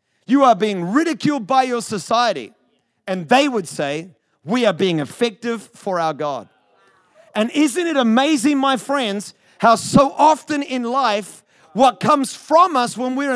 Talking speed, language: 155 wpm, English